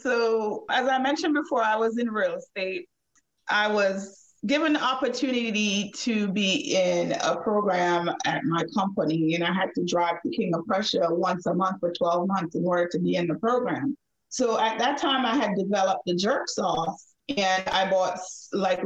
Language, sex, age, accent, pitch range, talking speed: English, female, 30-49, American, 185-250 Hz, 190 wpm